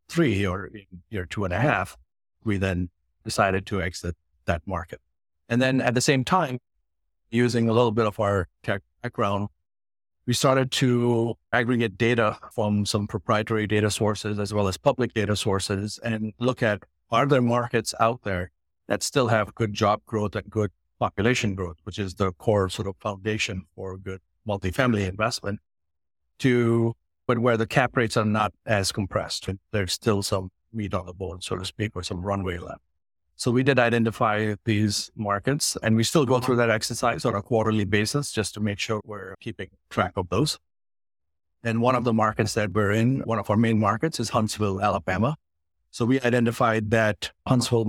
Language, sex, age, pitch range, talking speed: English, male, 50-69, 95-115 Hz, 180 wpm